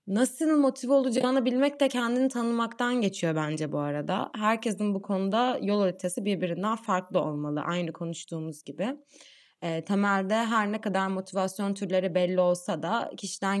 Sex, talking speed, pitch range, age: female, 145 wpm, 175-220 Hz, 20-39